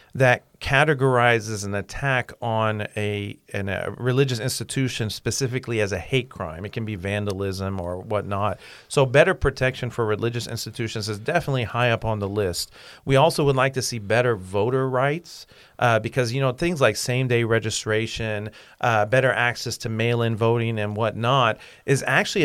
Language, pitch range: English, 110-130 Hz